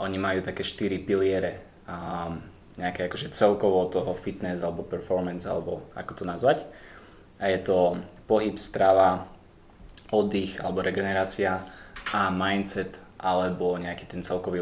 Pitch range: 95-105 Hz